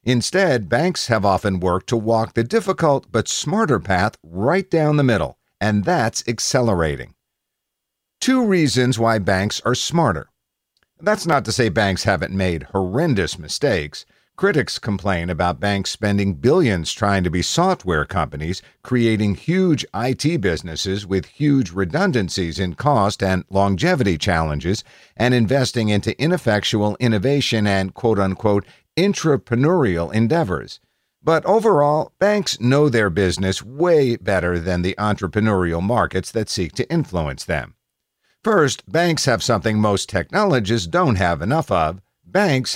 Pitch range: 95-130 Hz